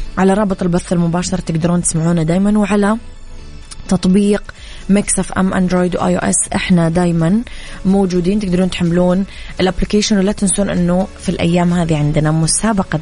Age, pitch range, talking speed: 20-39, 170-190 Hz, 130 wpm